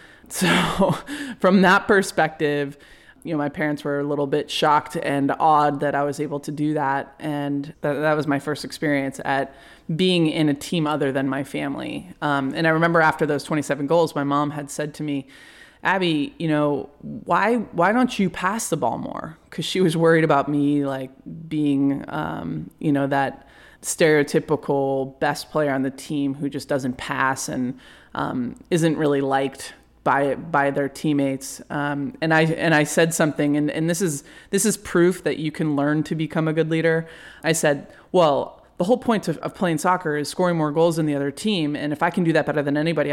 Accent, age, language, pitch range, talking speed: American, 20-39, English, 145-165 Hz, 200 wpm